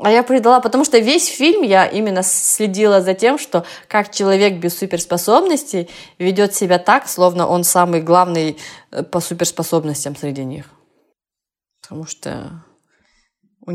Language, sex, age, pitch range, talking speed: Russian, female, 20-39, 165-215 Hz, 135 wpm